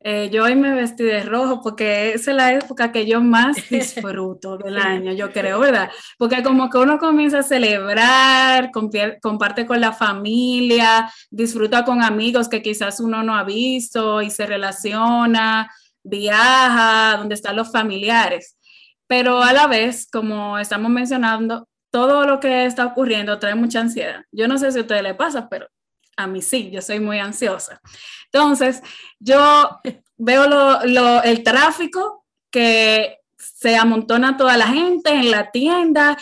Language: Spanish